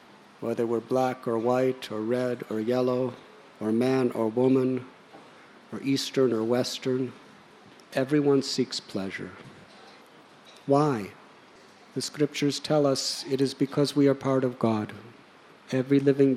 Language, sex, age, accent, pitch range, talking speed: English, male, 50-69, American, 125-140 Hz, 130 wpm